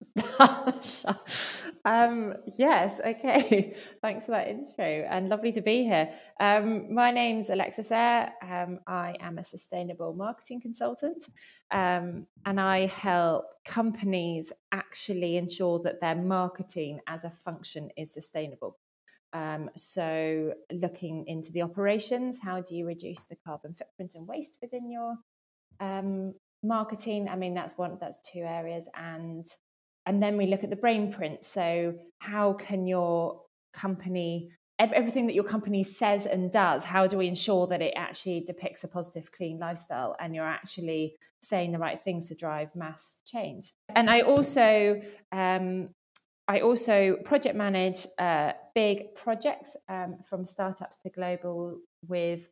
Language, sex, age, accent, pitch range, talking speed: English, female, 20-39, British, 170-215 Hz, 145 wpm